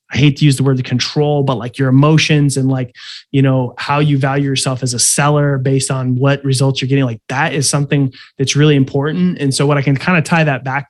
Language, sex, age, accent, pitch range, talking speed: English, male, 20-39, American, 135-165 Hz, 255 wpm